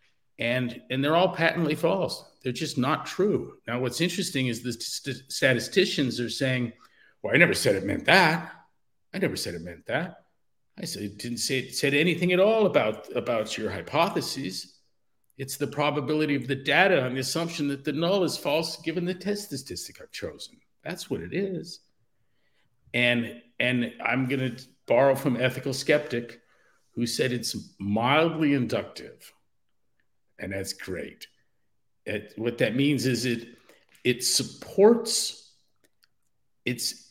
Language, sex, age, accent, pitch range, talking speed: English, male, 50-69, American, 120-150 Hz, 155 wpm